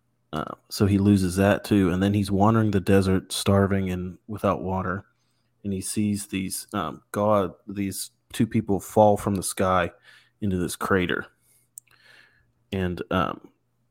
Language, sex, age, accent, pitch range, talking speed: English, male, 30-49, American, 90-105 Hz, 145 wpm